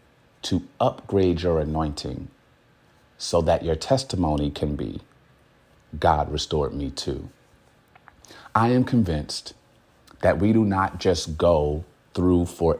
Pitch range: 80-110 Hz